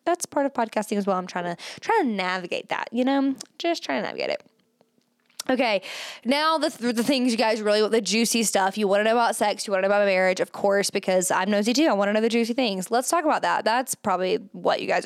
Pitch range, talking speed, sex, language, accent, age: 205-270 Hz, 265 wpm, female, English, American, 10-29